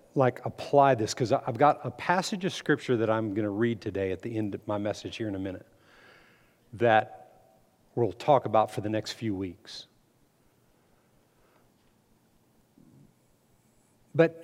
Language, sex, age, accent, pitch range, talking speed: English, male, 50-69, American, 110-155 Hz, 150 wpm